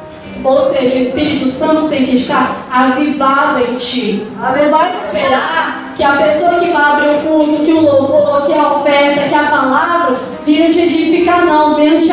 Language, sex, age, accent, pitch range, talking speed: Portuguese, female, 10-29, Brazilian, 240-310 Hz, 190 wpm